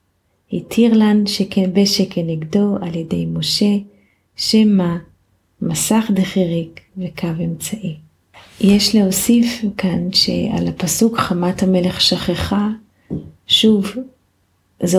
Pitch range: 165-195 Hz